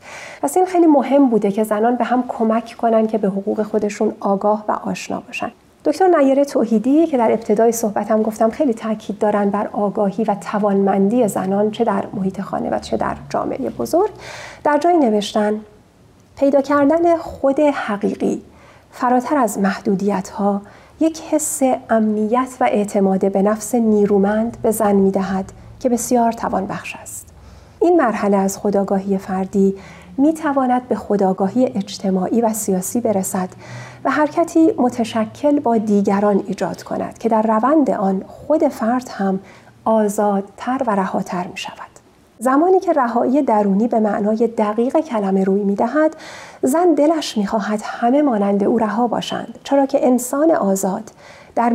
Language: Persian